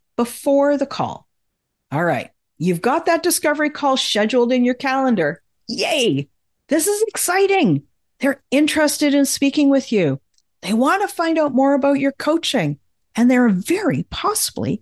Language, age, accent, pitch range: English, 50-69, American, 185-290 Hz